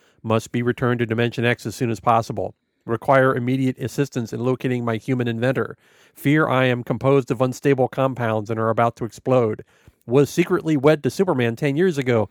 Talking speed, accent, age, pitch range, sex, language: 185 wpm, American, 40-59, 115-160 Hz, male, English